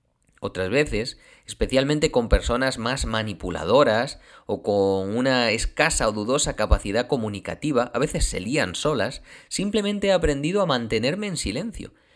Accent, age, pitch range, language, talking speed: Spanish, 30-49, 95-135 Hz, Spanish, 135 wpm